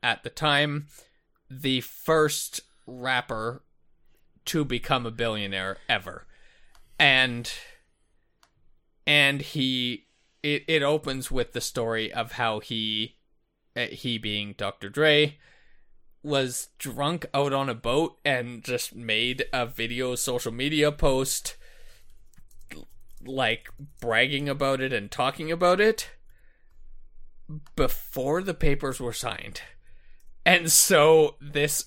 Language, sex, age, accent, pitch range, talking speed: English, male, 20-39, American, 120-150 Hz, 105 wpm